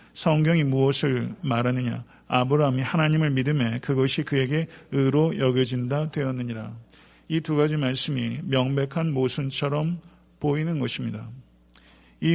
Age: 50-69